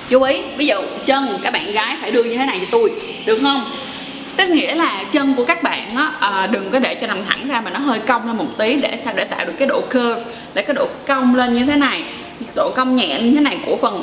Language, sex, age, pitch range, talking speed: Vietnamese, female, 20-39, 220-275 Hz, 275 wpm